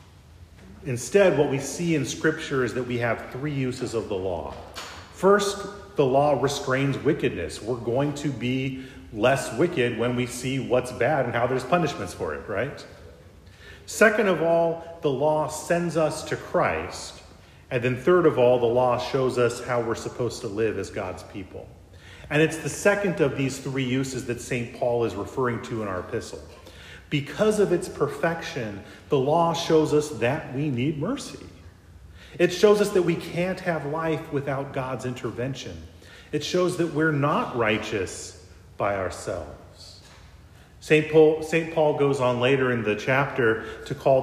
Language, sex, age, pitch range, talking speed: English, male, 40-59, 105-150 Hz, 165 wpm